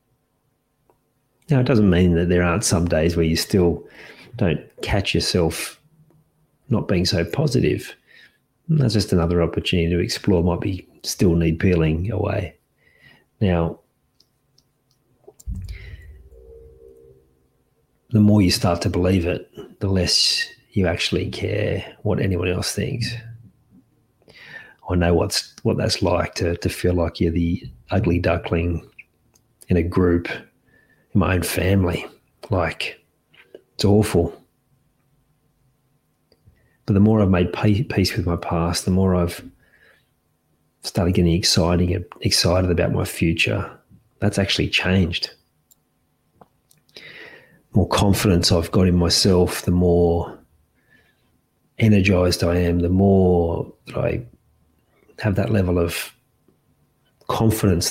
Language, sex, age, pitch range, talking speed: English, male, 40-59, 85-110 Hz, 120 wpm